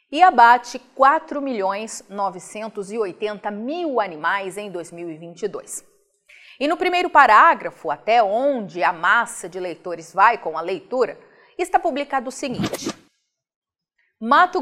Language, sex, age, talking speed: Portuguese, female, 30-49, 105 wpm